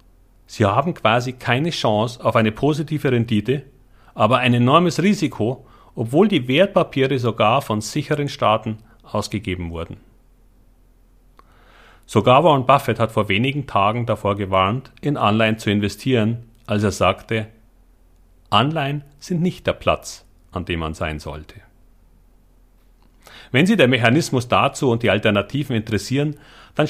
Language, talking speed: German, 130 wpm